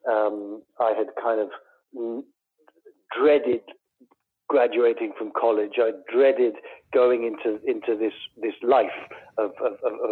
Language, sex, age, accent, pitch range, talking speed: English, male, 50-69, British, 120-170 Hz, 120 wpm